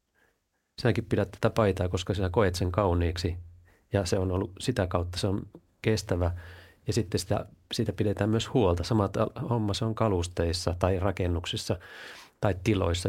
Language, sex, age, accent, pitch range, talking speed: Finnish, male, 30-49, native, 90-105 Hz, 150 wpm